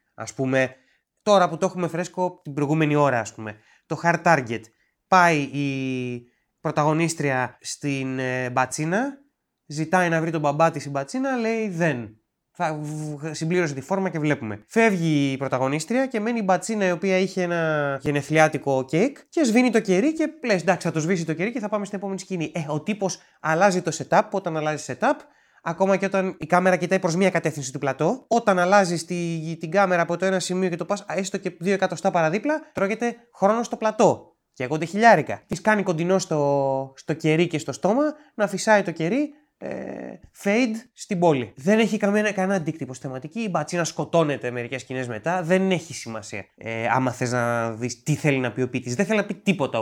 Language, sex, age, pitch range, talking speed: Greek, male, 20-39, 140-195 Hz, 195 wpm